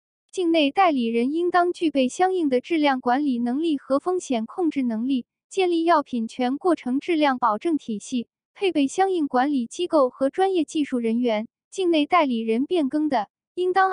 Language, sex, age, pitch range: Chinese, female, 10-29, 255-335 Hz